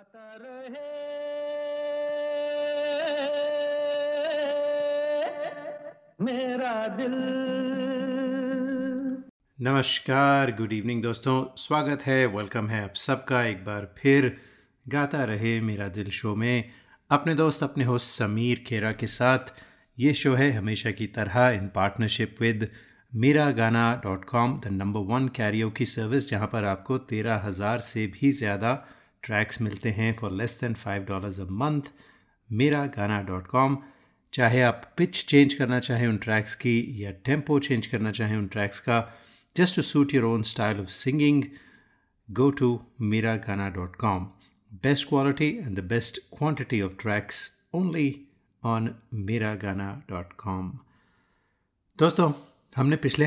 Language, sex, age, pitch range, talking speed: Hindi, male, 30-49, 110-145 Hz, 130 wpm